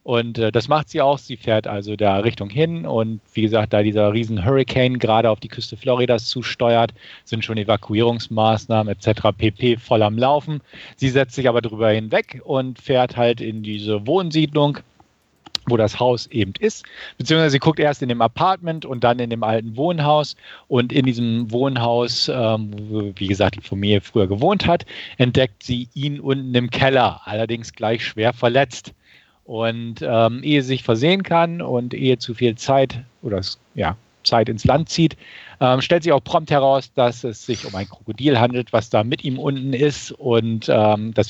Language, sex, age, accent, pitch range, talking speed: German, male, 40-59, German, 110-135 Hz, 180 wpm